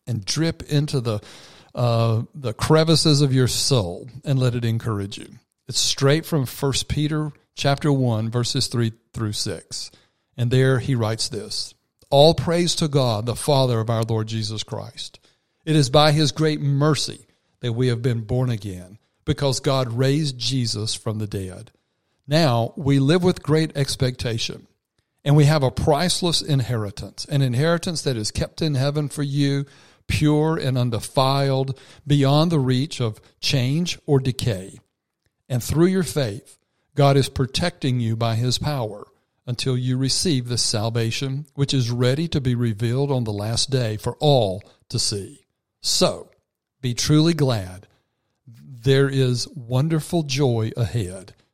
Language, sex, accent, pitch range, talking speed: English, male, American, 115-140 Hz, 155 wpm